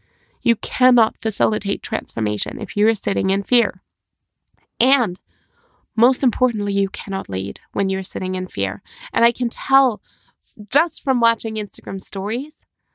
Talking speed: 135 wpm